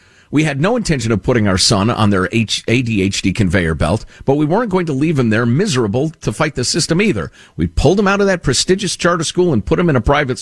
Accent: American